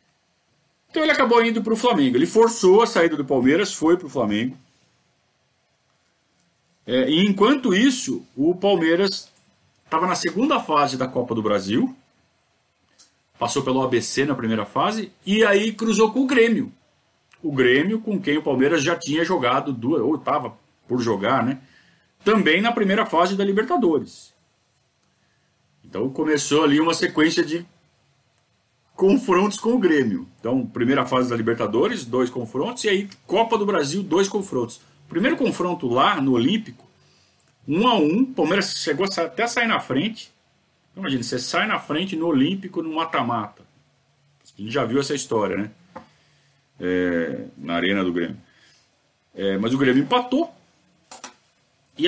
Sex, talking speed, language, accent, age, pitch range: male, 150 wpm, Portuguese, Brazilian, 50-69, 135-225 Hz